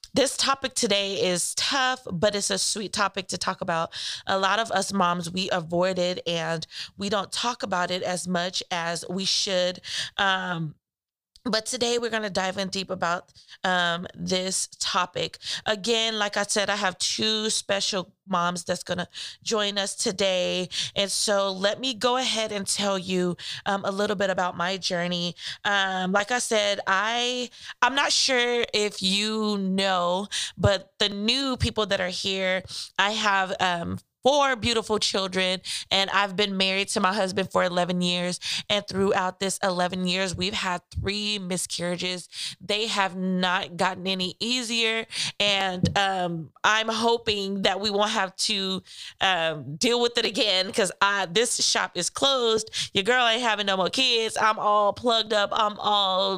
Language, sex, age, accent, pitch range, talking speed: English, female, 20-39, American, 180-215 Hz, 165 wpm